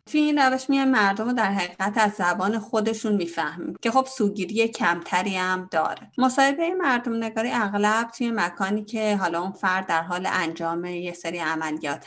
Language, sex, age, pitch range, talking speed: Persian, female, 30-49, 170-235 Hz, 165 wpm